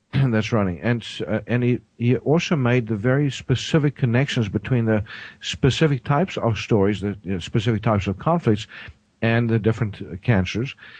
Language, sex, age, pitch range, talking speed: English, male, 50-69, 105-120 Hz, 165 wpm